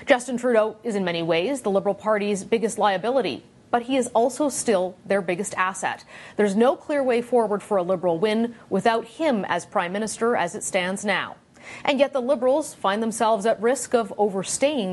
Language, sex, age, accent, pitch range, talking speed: English, female, 30-49, American, 195-255 Hz, 190 wpm